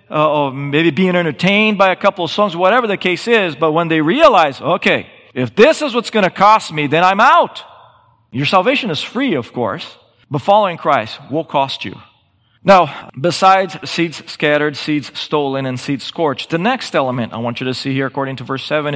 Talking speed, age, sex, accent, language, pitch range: 205 wpm, 40-59, male, American, English, 150-205 Hz